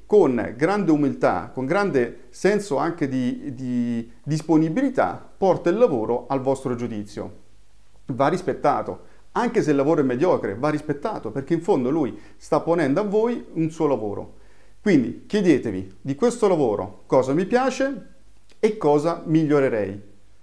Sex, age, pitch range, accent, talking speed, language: male, 40-59, 115-165 Hz, native, 140 wpm, Italian